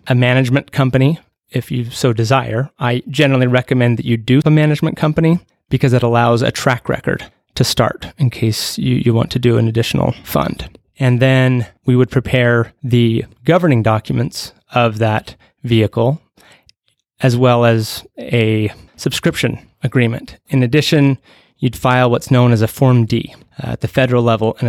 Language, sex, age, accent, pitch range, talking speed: English, male, 30-49, American, 115-135 Hz, 165 wpm